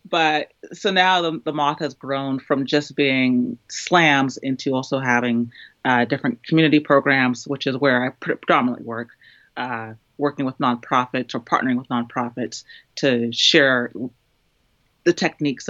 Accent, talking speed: American, 140 wpm